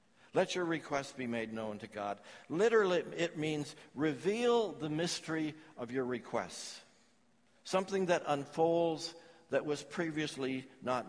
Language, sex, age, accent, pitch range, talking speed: English, male, 60-79, American, 125-180 Hz, 130 wpm